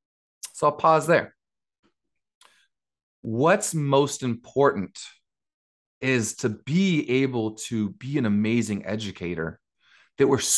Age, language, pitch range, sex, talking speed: 30-49, English, 100-140 Hz, male, 100 wpm